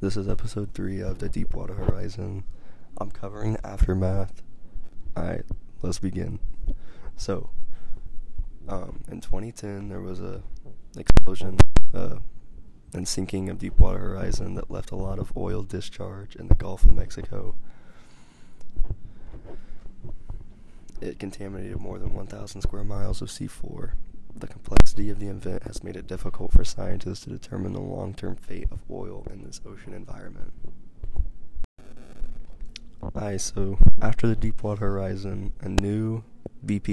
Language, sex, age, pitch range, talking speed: English, male, 20-39, 95-105 Hz, 130 wpm